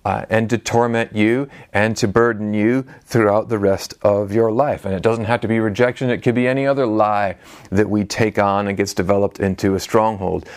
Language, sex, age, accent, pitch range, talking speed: English, male, 40-59, American, 100-125 Hz, 215 wpm